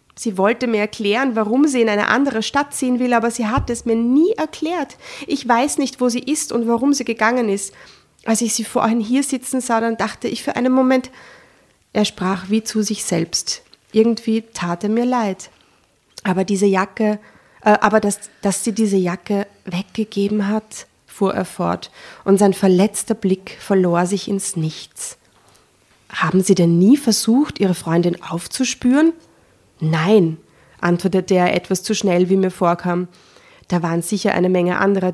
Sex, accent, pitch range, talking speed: female, German, 185-235 Hz, 170 wpm